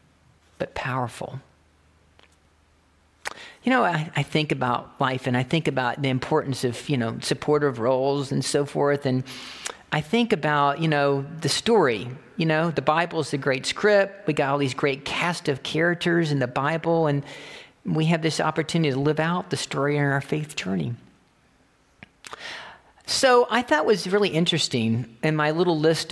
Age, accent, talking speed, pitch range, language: 50-69, American, 170 wpm, 140-175 Hz, English